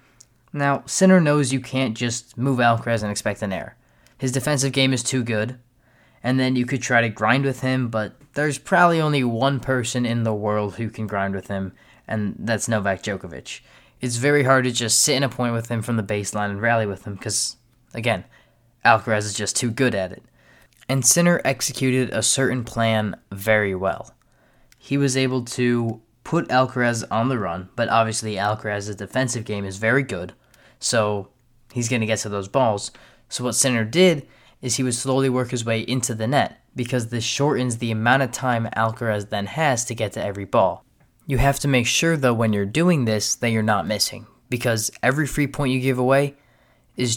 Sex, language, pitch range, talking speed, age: male, English, 110-130 Hz, 200 wpm, 20-39